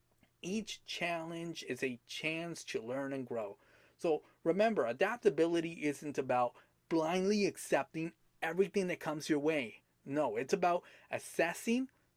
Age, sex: 30-49, male